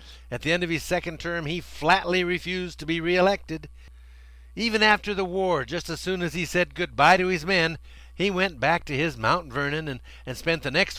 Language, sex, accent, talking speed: English, male, American, 215 wpm